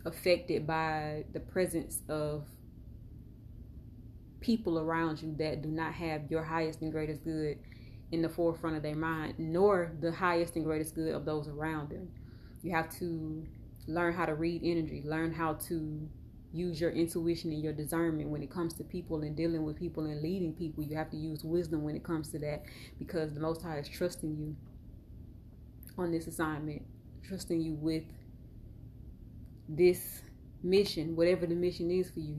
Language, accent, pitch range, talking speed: German, American, 150-170 Hz, 170 wpm